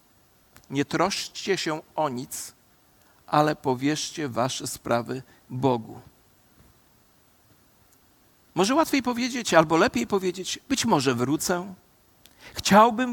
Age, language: 50-69, Polish